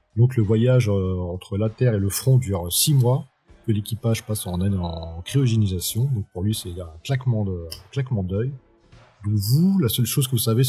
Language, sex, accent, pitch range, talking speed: French, male, French, 100-125 Hz, 225 wpm